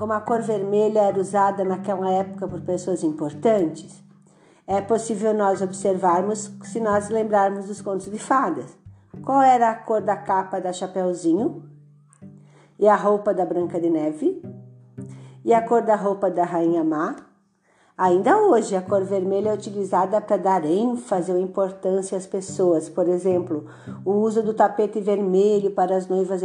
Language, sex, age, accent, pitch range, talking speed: Portuguese, female, 50-69, Brazilian, 180-215 Hz, 155 wpm